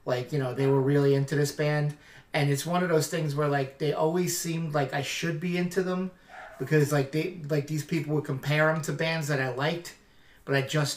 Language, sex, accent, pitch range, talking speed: English, male, American, 140-165 Hz, 235 wpm